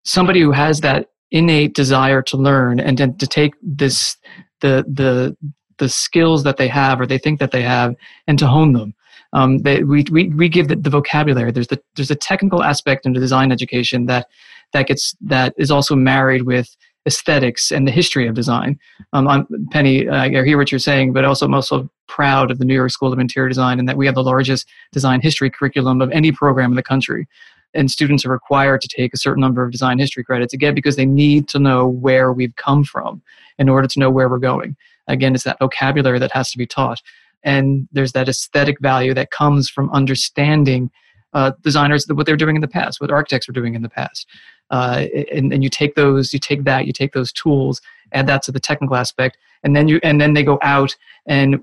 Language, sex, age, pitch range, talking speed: English, male, 30-49, 130-145 Hz, 220 wpm